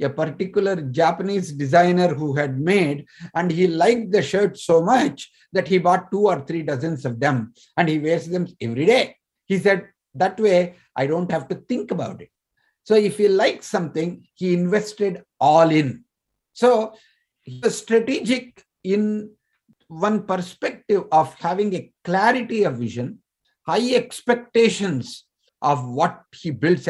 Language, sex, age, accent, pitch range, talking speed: Telugu, male, 50-69, native, 150-205 Hz, 150 wpm